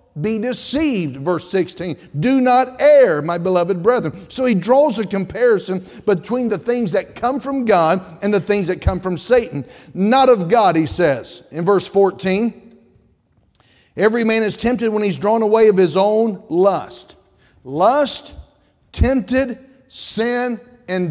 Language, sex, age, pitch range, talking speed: English, male, 50-69, 185-230 Hz, 150 wpm